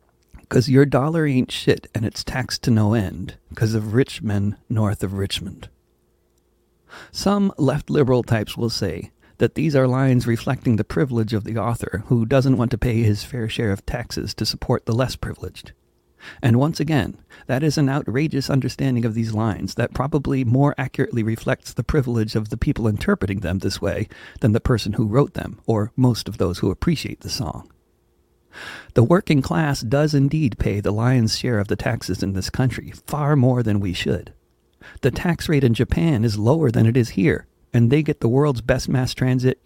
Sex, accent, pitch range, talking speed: male, American, 105-135 Hz, 190 wpm